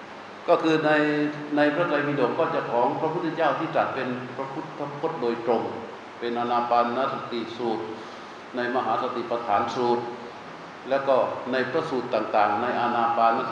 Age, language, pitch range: 60-79, Thai, 120-150 Hz